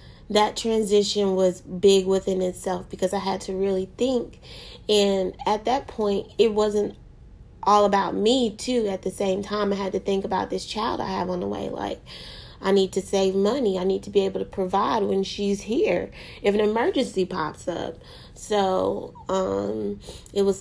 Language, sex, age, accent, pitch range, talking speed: English, female, 20-39, American, 185-210 Hz, 185 wpm